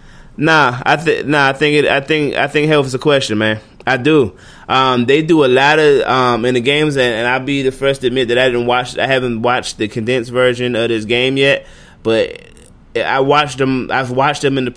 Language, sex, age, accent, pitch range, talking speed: English, male, 20-39, American, 110-140 Hz, 240 wpm